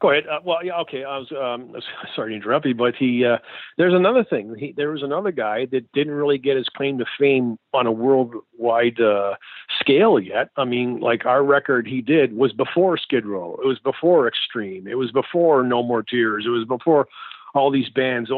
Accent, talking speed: American, 215 wpm